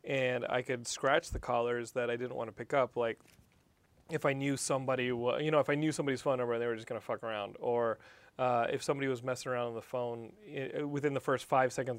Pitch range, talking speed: 125-160 Hz, 250 wpm